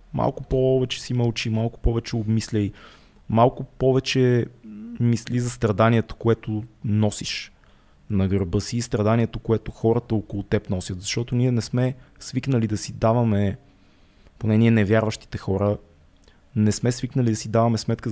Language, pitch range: Bulgarian, 105-125 Hz